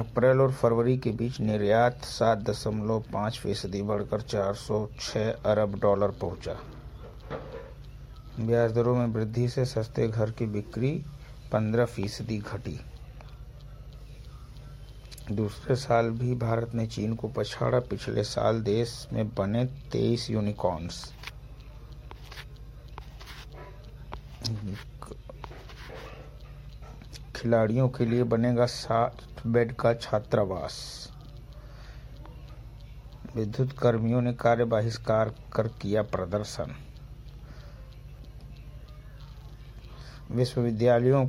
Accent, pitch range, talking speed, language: native, 110-130 Hz, 85 wpm, Hindi